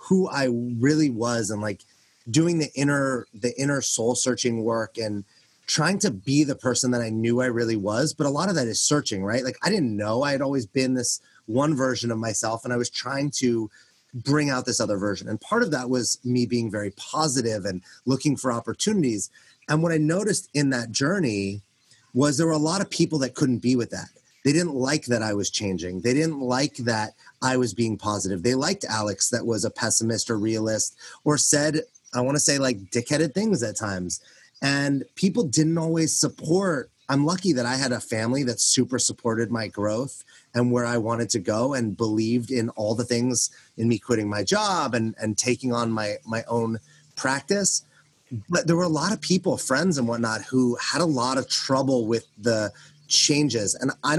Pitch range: 115-145 Hz